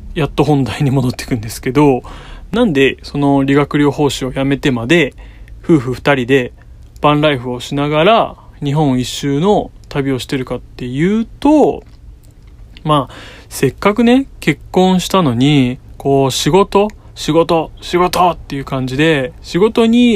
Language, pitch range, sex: Japanese, 125-170 Hz, male